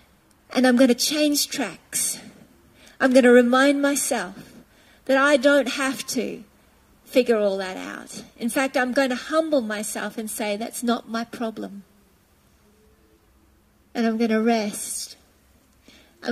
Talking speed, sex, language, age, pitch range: 145 wpm, female, English, 40-59, 225-280 Hz